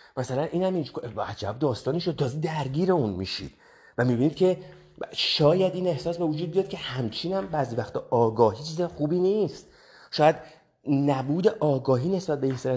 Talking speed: 160 wpm